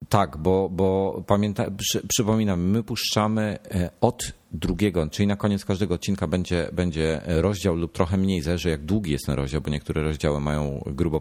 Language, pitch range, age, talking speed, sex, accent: Polish, 80-100 Hz, 40-59, 170 wpm, male, native